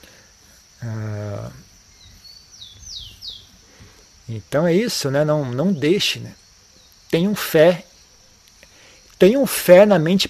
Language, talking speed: Portuguese, 85 wpm